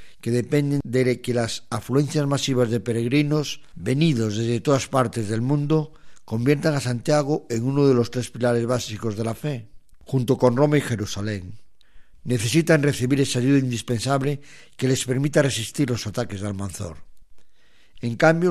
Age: 50-69